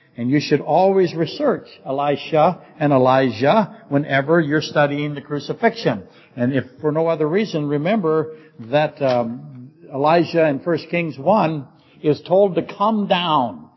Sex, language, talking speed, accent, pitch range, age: male, English, 140 wpm, American, 145-190 Hz, 60-79